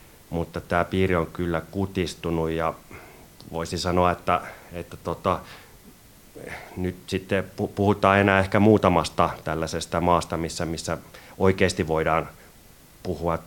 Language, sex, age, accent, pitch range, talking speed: Finnish, male, 30-49, native, 80-95 Hz, 110 wpm